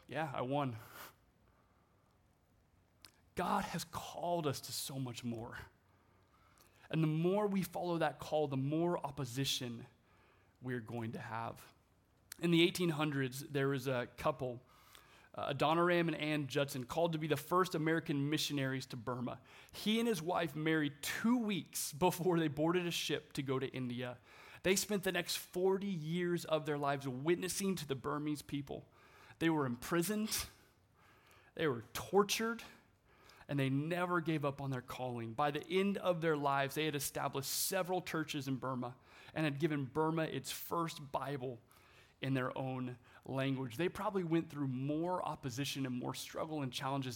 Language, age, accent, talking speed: English, 30-49, American, 160 wpm